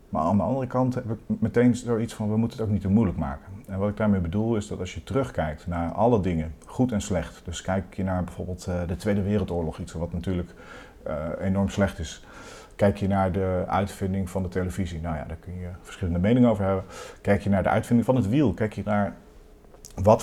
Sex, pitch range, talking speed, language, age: male, 90-105 Hz, 230 wpm, Dutch, 40-59